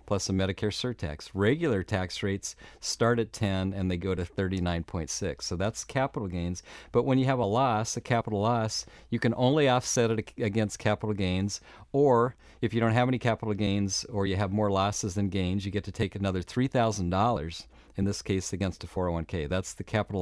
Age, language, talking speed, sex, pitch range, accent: 40-59, English, 195 wpm, male, 95-120 Hz, American